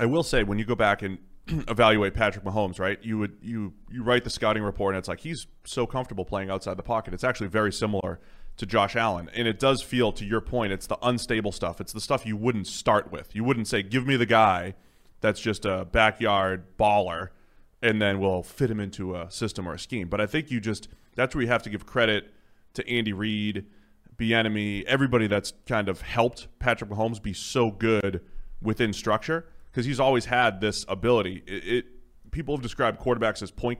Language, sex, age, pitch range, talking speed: English, male, 30-49, 100-120 Hz, 215 wpm